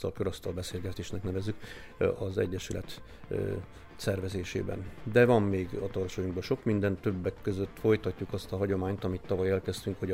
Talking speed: 135 wpm